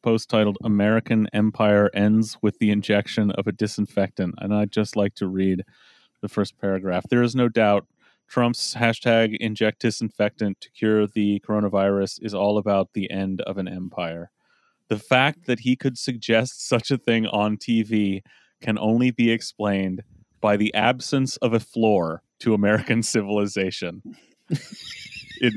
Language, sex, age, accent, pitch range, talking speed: English, male, 30-49, American, 105-125 Hz, 155 wpm